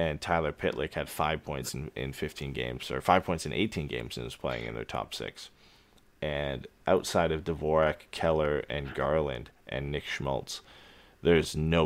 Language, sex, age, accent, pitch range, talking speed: English, male, 20-39, American, 75-85 Hz, 175 wpm